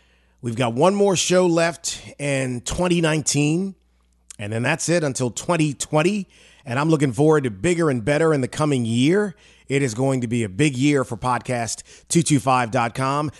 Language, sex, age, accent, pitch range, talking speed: English, male, 30-49, American, 120-155 Hz, 160 wpm